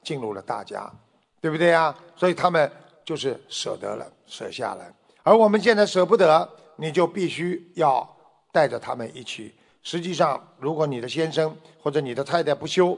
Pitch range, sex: 155-210 Hz, male